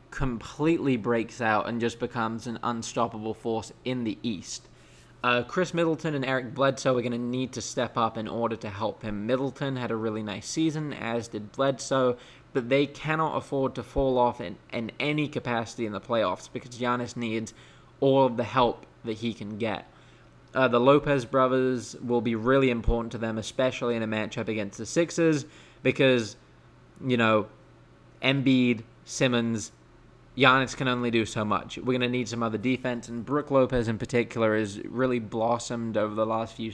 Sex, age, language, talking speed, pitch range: male, 20-39, English, 180 wpm, 115-130 Hz